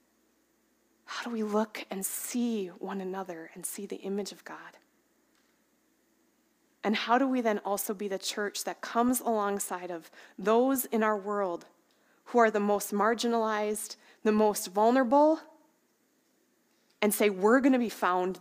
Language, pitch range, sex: English, 190-265 Hz, female